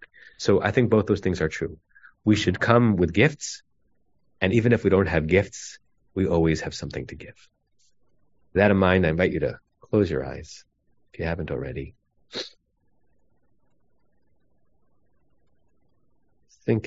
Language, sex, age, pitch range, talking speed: English, male, 30-49, 75-95 Hz, 145 wpm